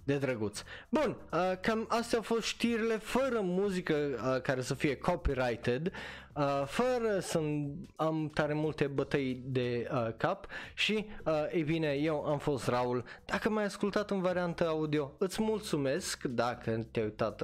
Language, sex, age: Romanian, male, 20-39